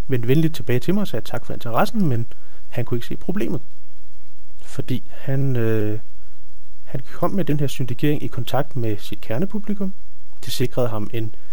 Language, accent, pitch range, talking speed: Danish, native, 110-150 Hz, 170 wpm